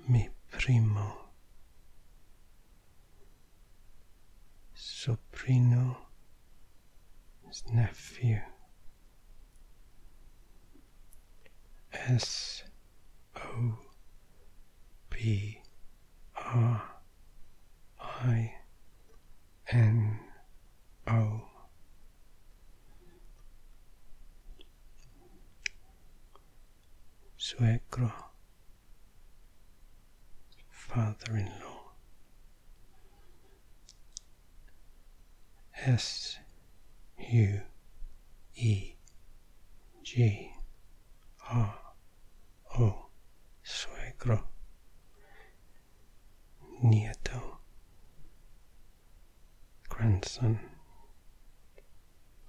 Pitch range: 85-115 Hz